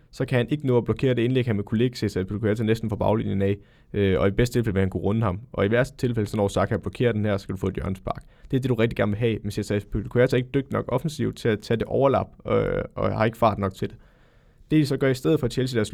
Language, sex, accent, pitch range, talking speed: Danish, male, native, 110-130 Hz, 315 wpm